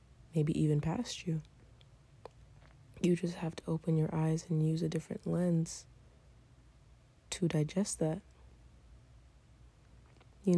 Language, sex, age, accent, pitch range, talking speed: English, female, 20-39, American, 130-170 Hz, 115 wpm